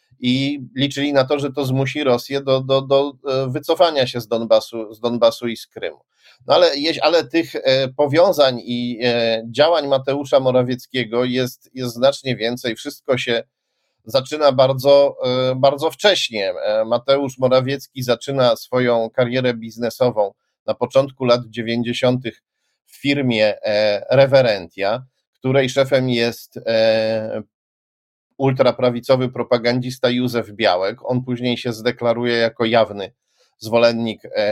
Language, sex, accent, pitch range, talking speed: Polish, male, native, 115-135 Hz, 115 wpm